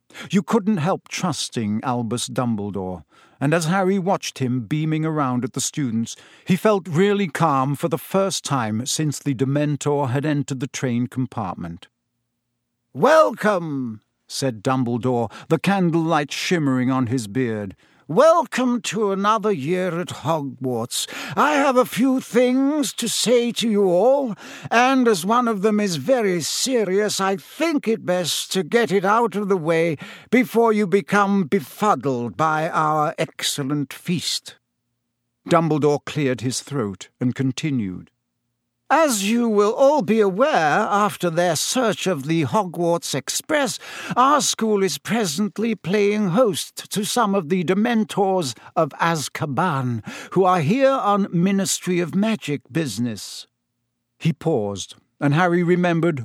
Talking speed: 140 wpm